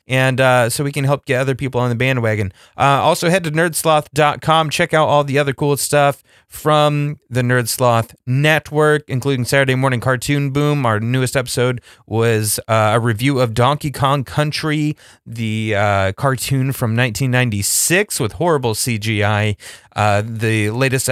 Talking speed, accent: 160 wpm, American